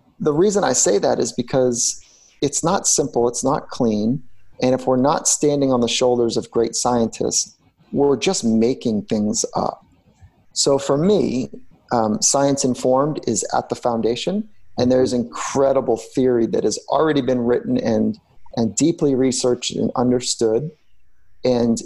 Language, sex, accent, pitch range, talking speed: English, male, American, 120-140 Hz, 150 wpm